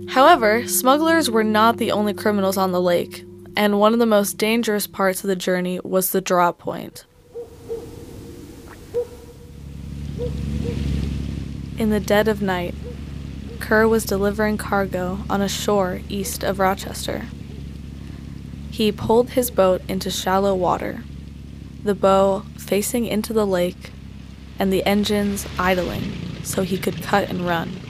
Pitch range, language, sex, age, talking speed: 170-215 Hz, English, female, 20-39, 135 wpm